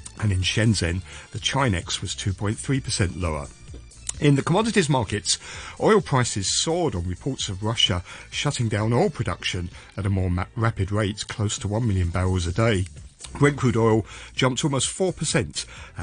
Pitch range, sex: 90-120 Hz, male